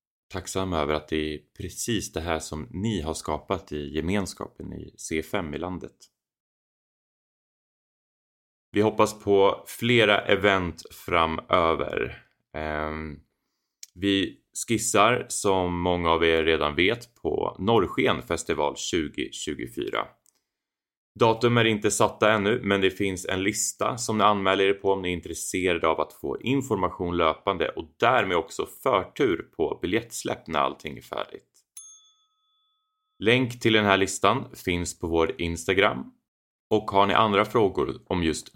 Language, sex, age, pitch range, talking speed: Swedish, male, 20-39, 80-110 Hz, 130 wpm